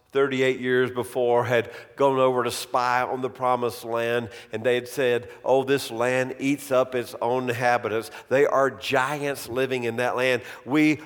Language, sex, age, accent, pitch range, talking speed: English, male, 50-69, American, 115-150 Hz, 175 wpm